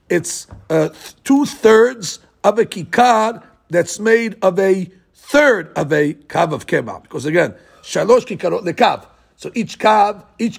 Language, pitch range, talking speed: English, 170-225 Hz, 145 wpm